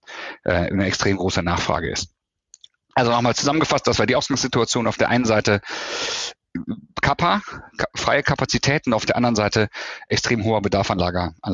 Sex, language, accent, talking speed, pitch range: male, German, German, 155 wpm, 95-120 Hz